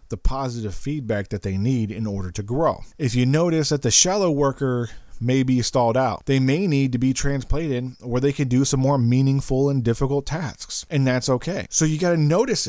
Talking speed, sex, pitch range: 210 wpm, male, 105-135 Hz